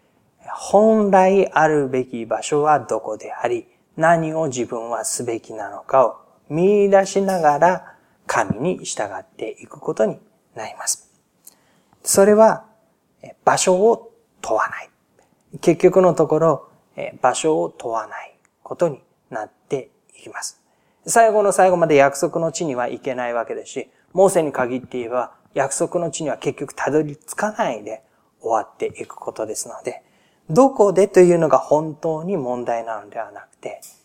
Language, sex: Japanese, male